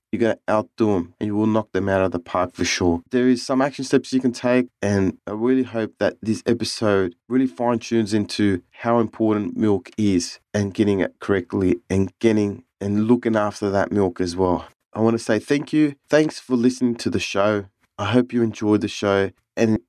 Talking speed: 215 wpm